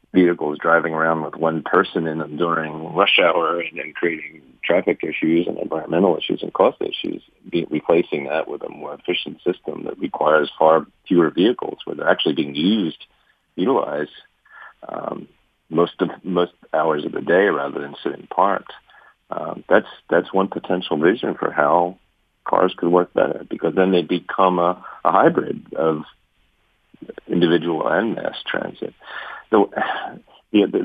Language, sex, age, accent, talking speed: English, male, 40-59, American, 155 wpm